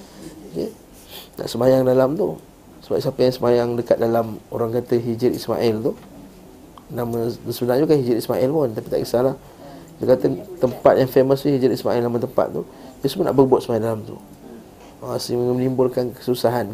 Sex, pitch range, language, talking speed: male, 120-135 Hz, Malay, 165 wpm